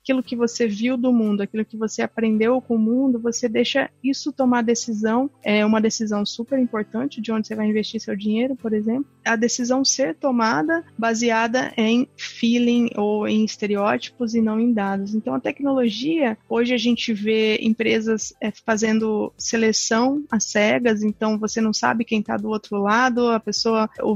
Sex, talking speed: female, 175 wpm